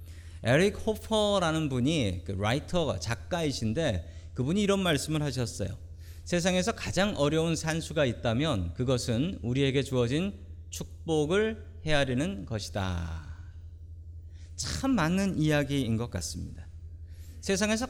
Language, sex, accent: Korean, male, native